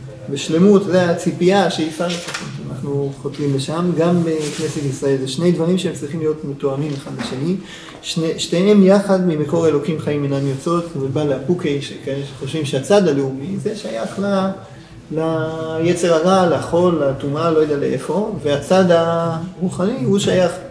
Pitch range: 145-180 Hz